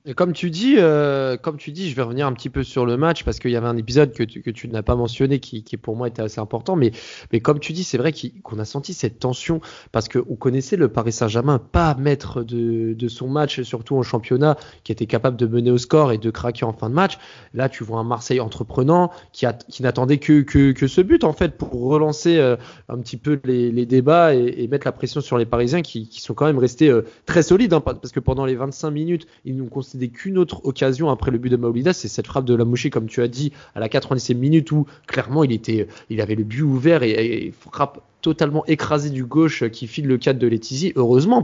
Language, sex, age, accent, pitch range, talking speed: French, male, 20-39, French, 120-155 Hz, 255 wpm